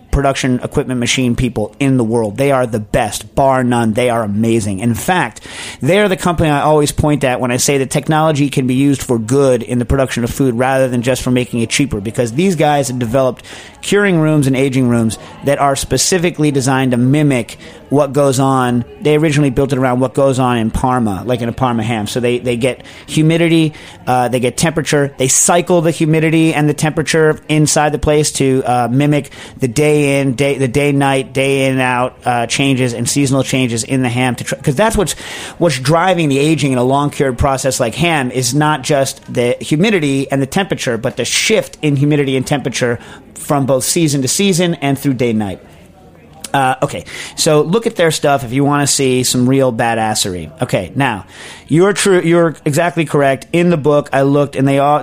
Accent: American